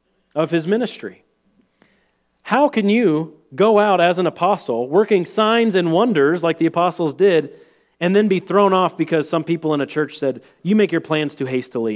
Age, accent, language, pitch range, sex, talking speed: 40-59, American, English, 125-200 Hz, male, 185 wpm